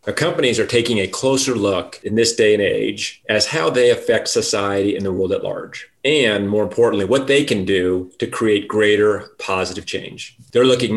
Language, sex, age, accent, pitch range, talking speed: English, male, 30-49, American, 100-160 Hz, 190 wpm